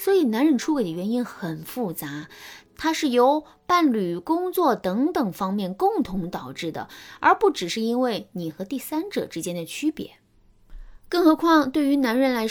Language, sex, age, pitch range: Chinese, female, 20-39, 185-285 Hz